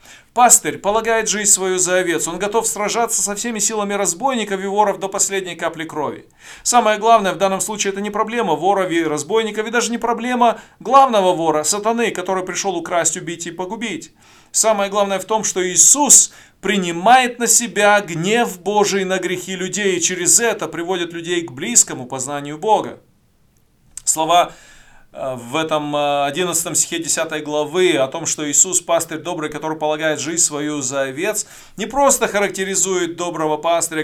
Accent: native